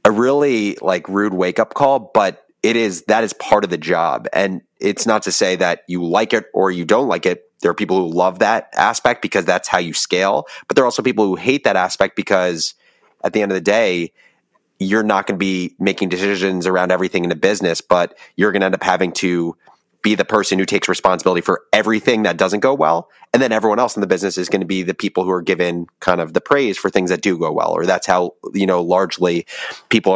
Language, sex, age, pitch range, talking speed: English, male, 30-49, 90-105 Hz, 245 wpm